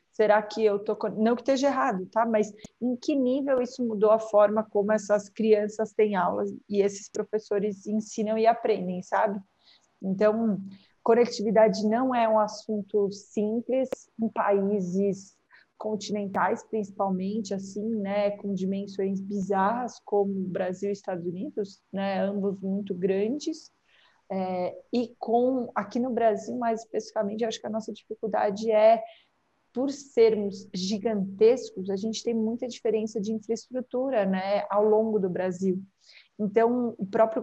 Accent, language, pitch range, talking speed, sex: Brazilian, Portuguese, 200-230 Hz, 140 wpm, female